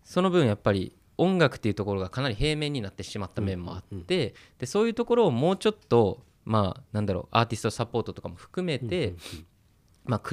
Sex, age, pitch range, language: male, 20-39, 100-130 Hz, Japanese